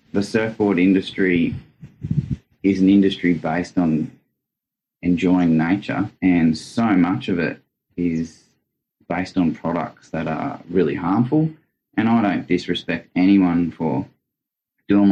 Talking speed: 120 wpm